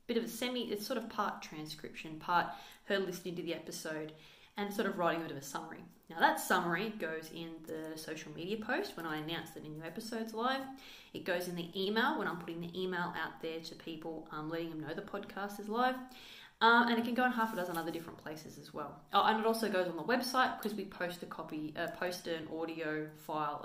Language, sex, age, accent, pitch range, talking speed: English, female, 20-39, Australian, 165-220 Hz, 240 wpm